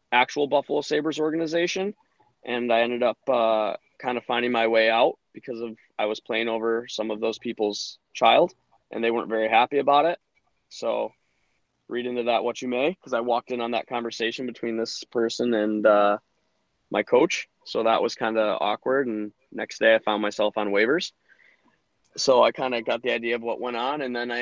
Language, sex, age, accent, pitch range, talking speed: English, male, 20-39, American, 105-120 Hz, 200 wpm